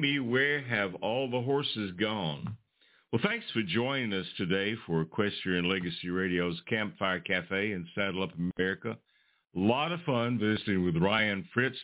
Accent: American